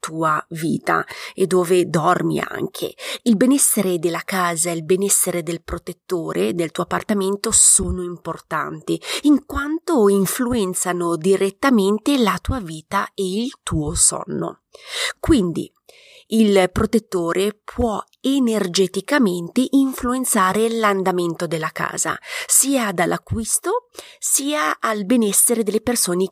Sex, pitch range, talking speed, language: female, 175-250 Hz, 105 wpm, Italian